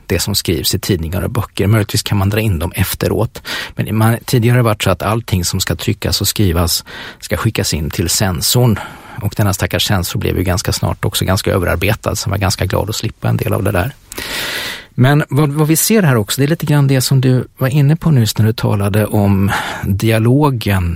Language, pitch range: English, 95-120 Hz